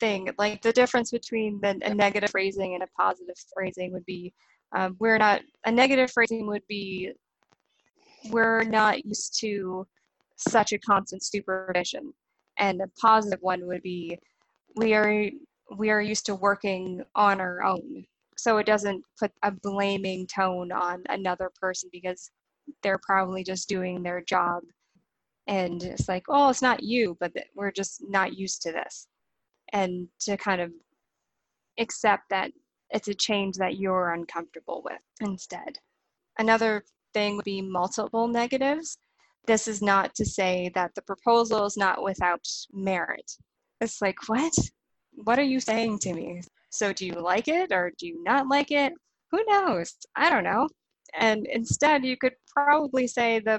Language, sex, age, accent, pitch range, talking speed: English, female, 10-29, American, 185-225 Hz, 160 wpm